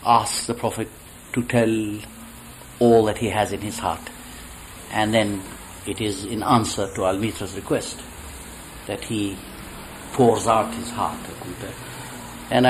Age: 60-79